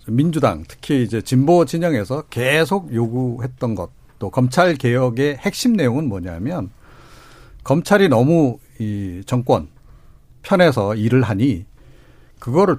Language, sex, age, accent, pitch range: Korean, male, 50-69, native, 120-180 Hz